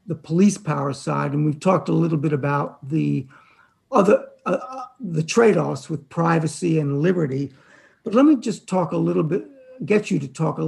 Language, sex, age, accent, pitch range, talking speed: English, male, 60-79, American, 145-185 Hz, 185 wpm